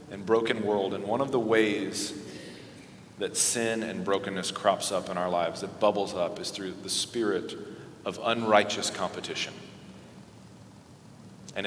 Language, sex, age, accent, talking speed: English, male, 40-59, American, 145 wpm